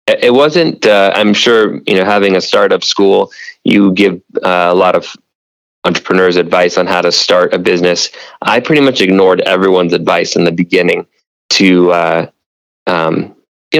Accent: American